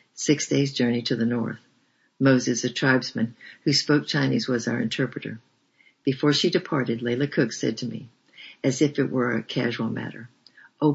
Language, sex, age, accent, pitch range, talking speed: English, female, 60-79, American, 120-140 Hz, 170 wpm